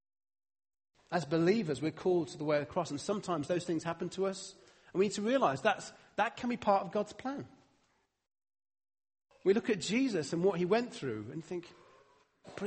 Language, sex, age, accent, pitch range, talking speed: English, male, 40-59, British, 145-205 Hz, 195 wpm